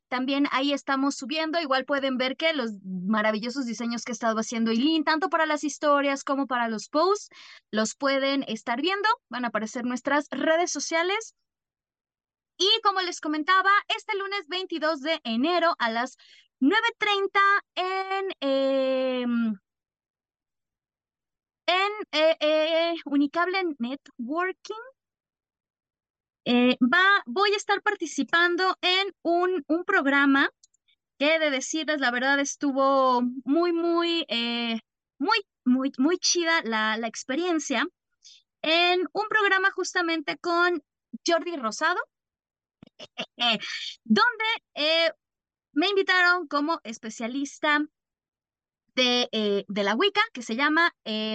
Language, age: Spanish, 20-39